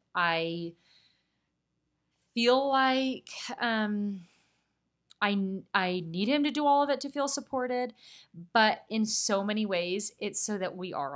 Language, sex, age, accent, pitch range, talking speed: English, female, 30-49, American, 175-225 Hz, 140 wpm